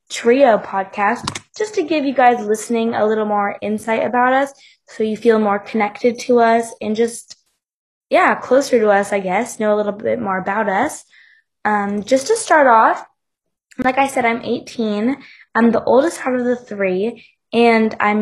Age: 10-29